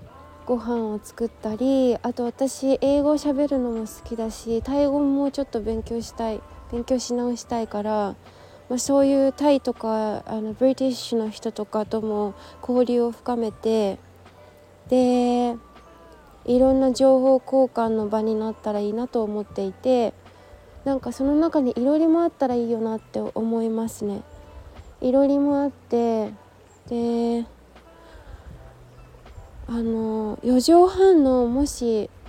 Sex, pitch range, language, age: female, 220-265 Hz, Japanese, 20-39